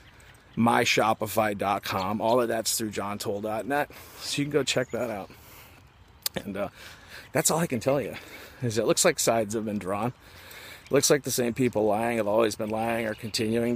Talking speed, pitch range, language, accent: 180 wpm, 110-135 Hz, English, American